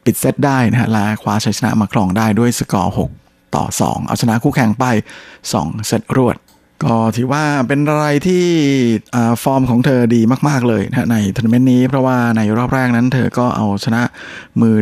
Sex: male